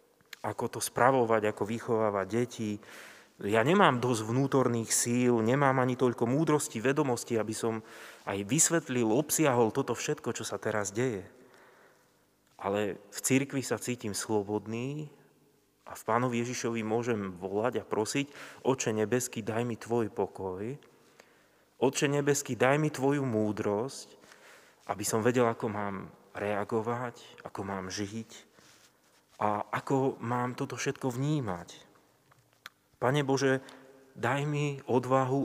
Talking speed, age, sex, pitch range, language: 125 wpm, 30-49, male, 110-135 Hz, Slovak